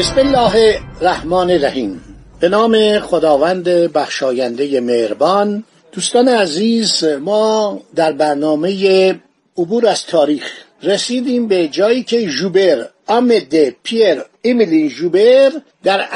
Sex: male